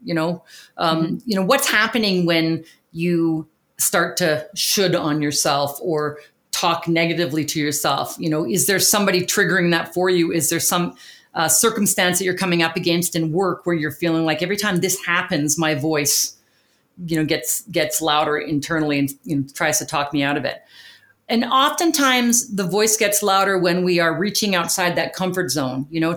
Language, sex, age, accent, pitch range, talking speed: English, female, 40-59, American, 160-195 Hz, 185 wpm